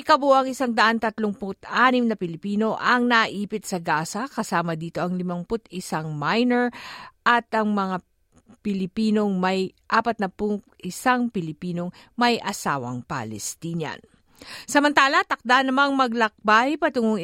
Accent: native